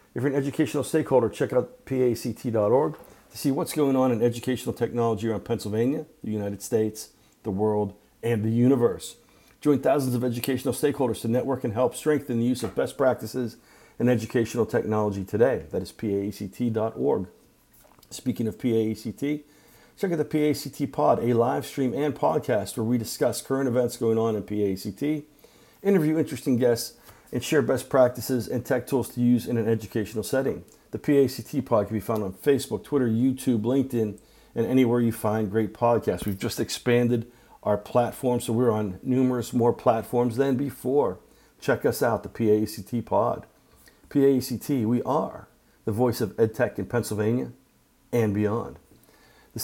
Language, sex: English, male